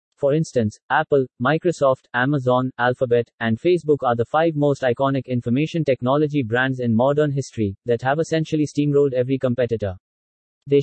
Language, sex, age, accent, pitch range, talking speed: English, male, 30-49, Indian, 120-150 Hz, 145 wpm